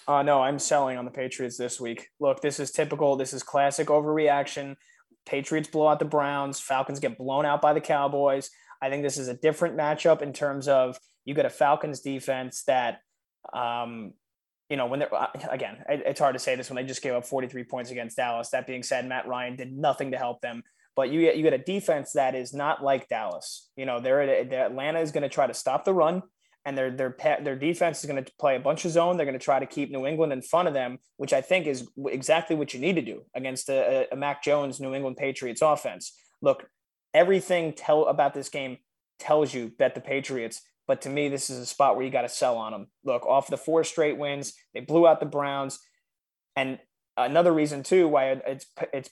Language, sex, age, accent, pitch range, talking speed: English, male, 20-39, American, 130-150 Hz, 230 wpm